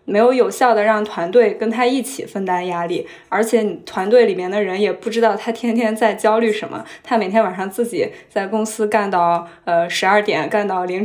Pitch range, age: 185-225 Hz, 10-29